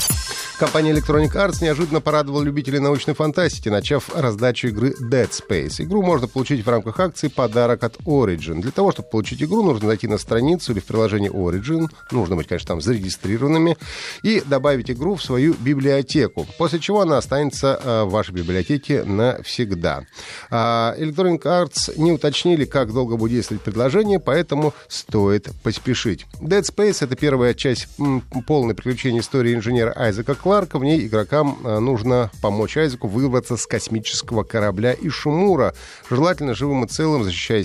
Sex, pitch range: male, 110-150 Hz